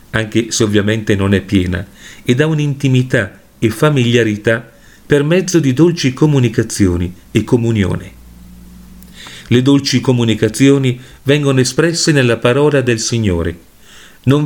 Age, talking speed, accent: 40-59, 115 wpm, native